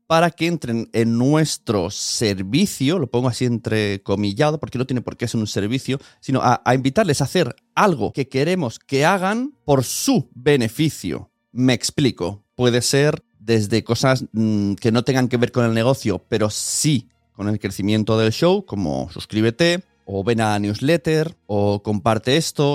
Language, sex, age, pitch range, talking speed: Spanish, male, 40-59, 110-155 Hz, 165 wpm